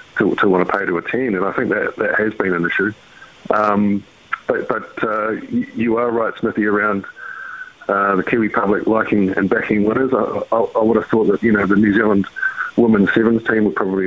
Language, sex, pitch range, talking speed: English, male, 100-120 Hz, 215 wpm